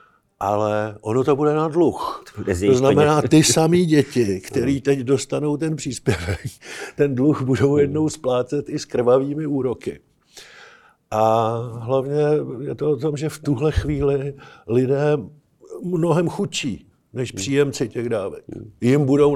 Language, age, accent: Czech, 50-69, native